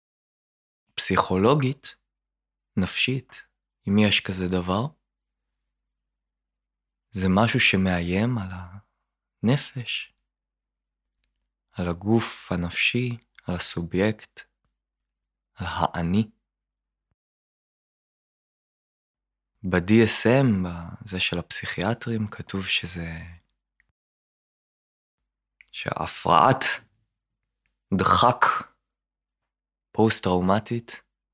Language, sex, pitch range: Hebrew, male, 85-110 Hz